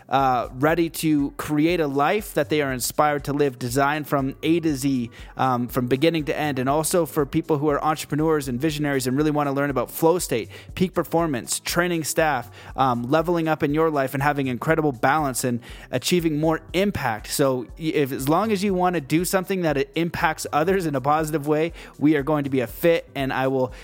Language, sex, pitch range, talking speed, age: English, male, 135-160 Hz, 215 wpm, 20-39